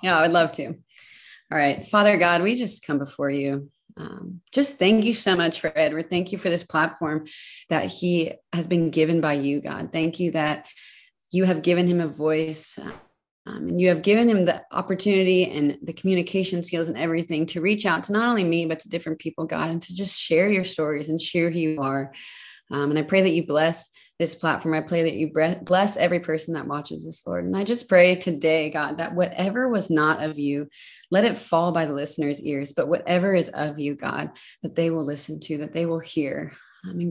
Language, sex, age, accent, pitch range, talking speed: English, female, 30-49, American, 155-185 Hz, 220 wpm